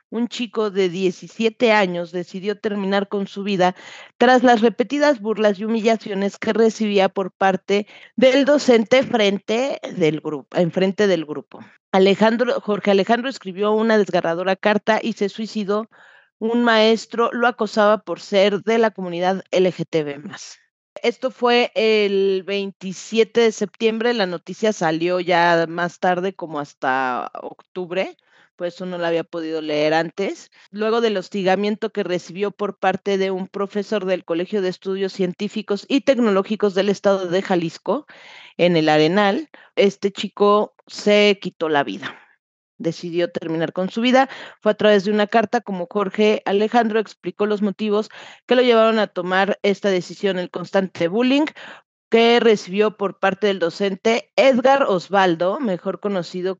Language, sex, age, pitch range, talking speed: Spanish, female, 40-59, 185-220 Hz, 145 wpm